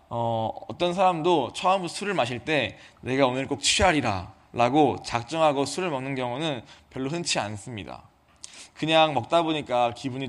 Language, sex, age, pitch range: Korean, male, 20-39, 120-155 Hz